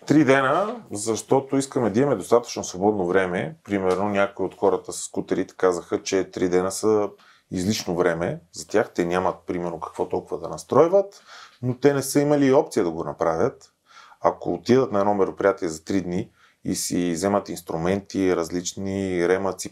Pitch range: 95-130 Hz